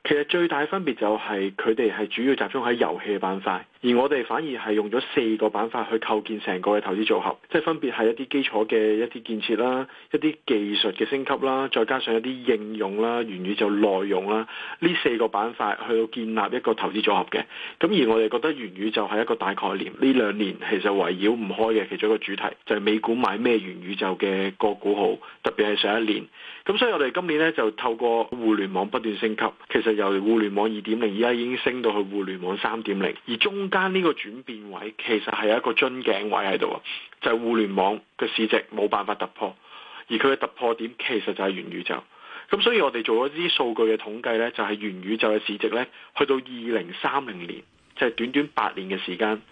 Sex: male